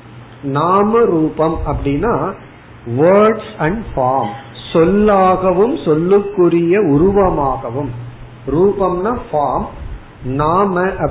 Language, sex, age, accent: Tamil, male, 50-69, native